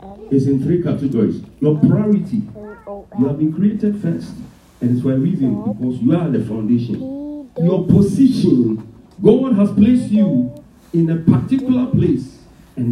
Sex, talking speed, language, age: male, 150 wpm, English, 50-69